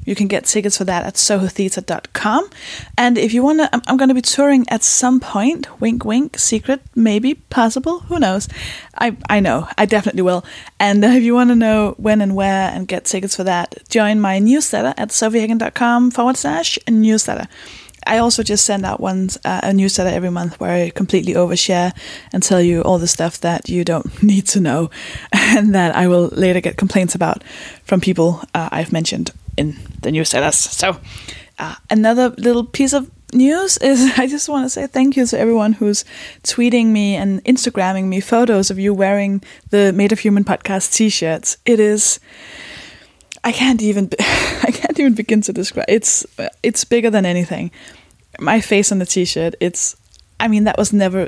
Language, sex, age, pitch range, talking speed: English, female, 10-29, 185-235 Hz, 185 wpm